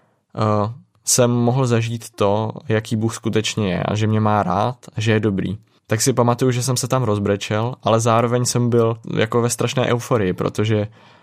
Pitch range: 105-120 Hz